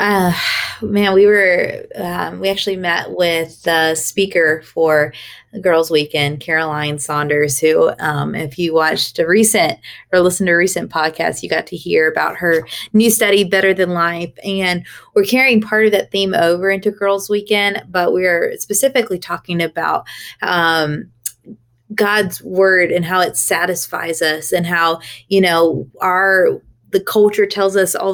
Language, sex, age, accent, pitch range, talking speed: English, female, 20-39, American, 165-195 Hz, 160 wpm